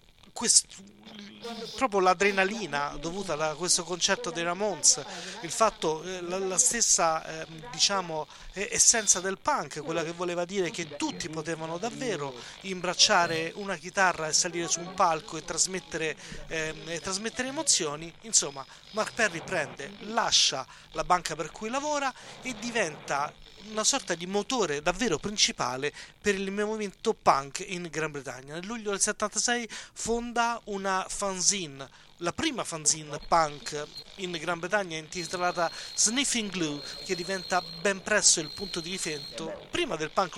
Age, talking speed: 30-49, 140 wpm